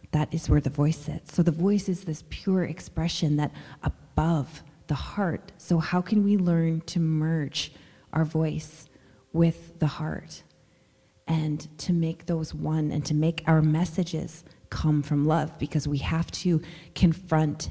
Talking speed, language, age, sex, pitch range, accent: 160 wpm, English, 30-49, female, 150-175 Hz, American